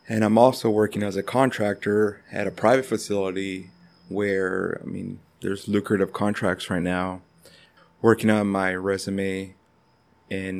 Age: 20-39